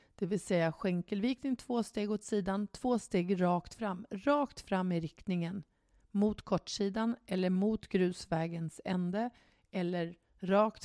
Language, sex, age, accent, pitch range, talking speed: Swedish, female, 40-59, native, 175-215 Hz, 135 wpm